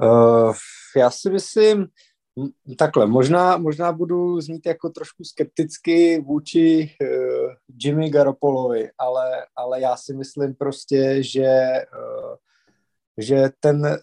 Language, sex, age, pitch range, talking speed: Slovak, male, 20-39, 130-150 Hz, 115 wpm